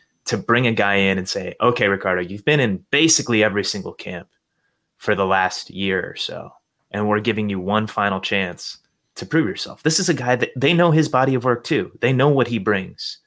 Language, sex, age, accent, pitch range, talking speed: English, male, 30-49, American, 100-130 Hz, 220 wpm